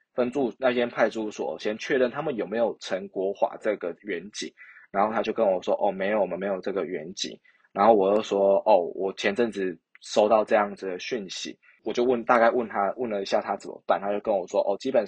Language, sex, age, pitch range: Chinese, male, 20-39, 100-120 Hz